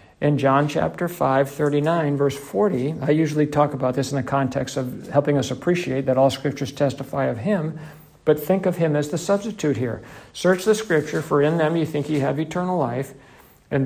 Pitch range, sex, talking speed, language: 120-150 Hz, male, 200 wpm, English